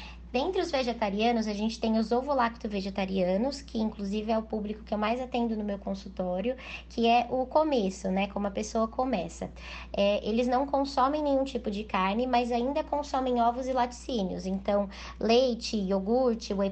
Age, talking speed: 10-29, 165 wpm